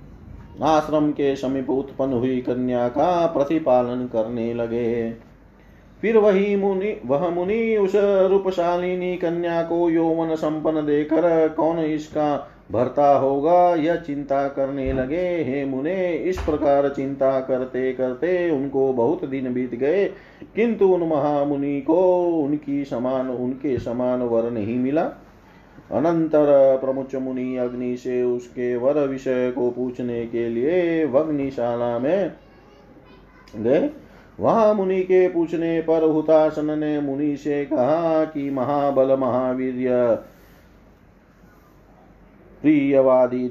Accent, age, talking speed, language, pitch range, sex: native, 30-49, 110 wpm, Hindi, 125-165 Hz, male